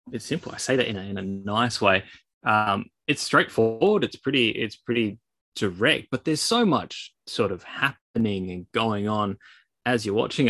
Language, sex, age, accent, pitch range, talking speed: English, male, 20-39, Australian, 100-130 Hz, 185 wpm